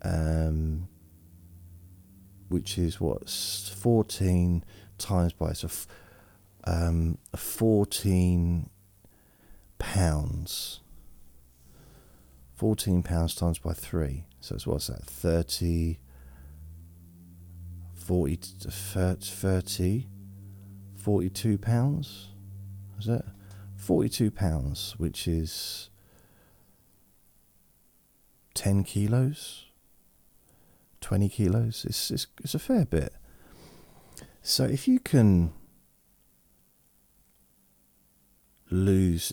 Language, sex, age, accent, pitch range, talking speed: English, male, 40-59, British, 80-100 Hz, 75 wpm